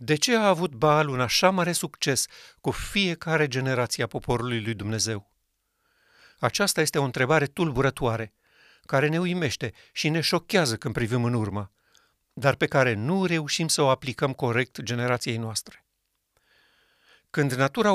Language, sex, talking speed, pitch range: Romanian, male, 145 wpm, 130-170 Hz